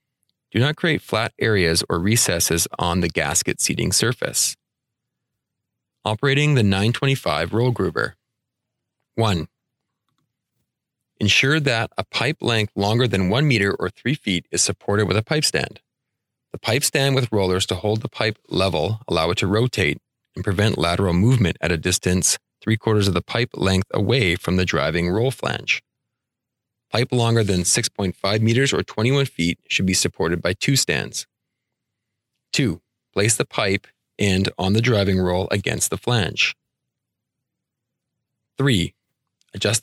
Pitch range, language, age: 95-125 Hz, English, 30-49